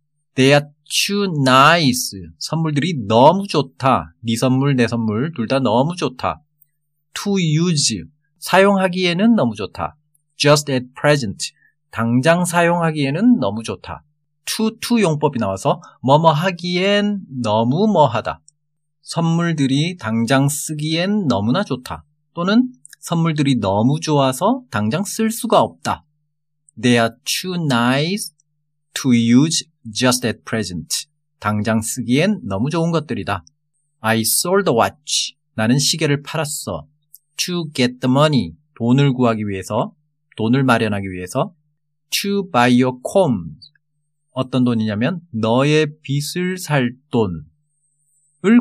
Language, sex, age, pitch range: Korean, male, 40-59, 125-160 Hz